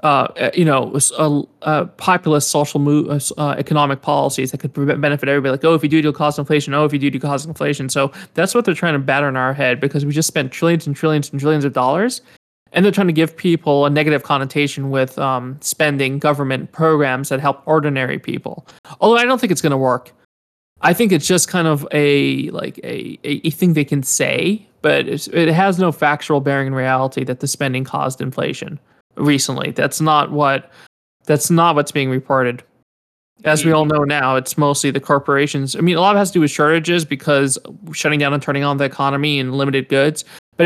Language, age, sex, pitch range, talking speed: English, 20-39, male, 140-155 Hz, 215 wpm